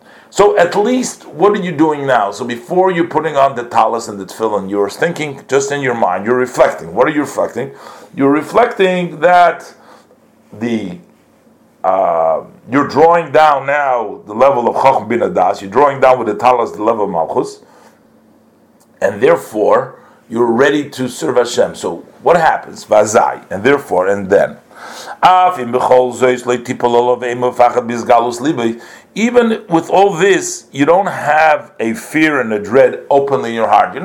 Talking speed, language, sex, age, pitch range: 155 wpm, English, male, 50-69, 120-175 Hz